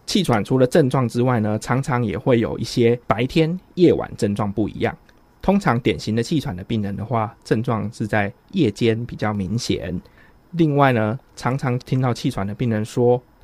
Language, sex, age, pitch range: Chinese, male, 20-39, 105-140 Hz